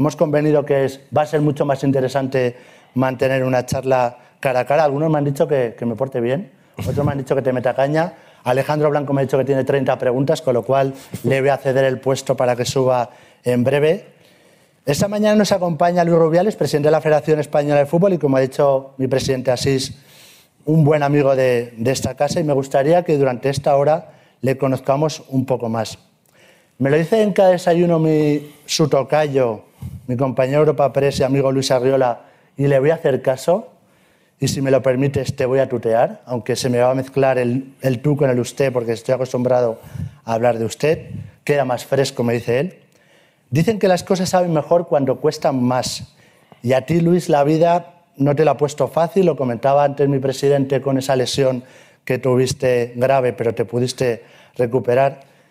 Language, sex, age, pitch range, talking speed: Spanish, male, 30-49, 130-155 Hz, 200 wpm